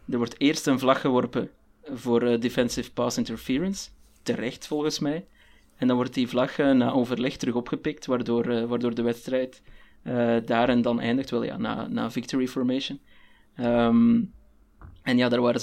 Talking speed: 175 wpm